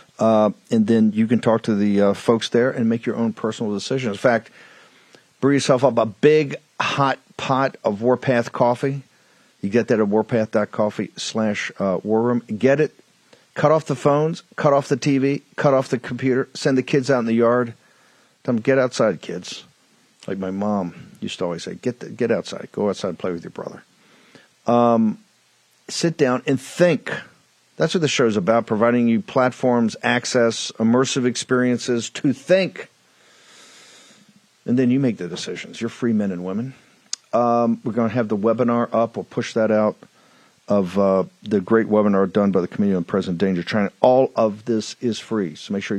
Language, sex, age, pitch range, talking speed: English, male, 50-69, 110-140 Hz, 190 wpm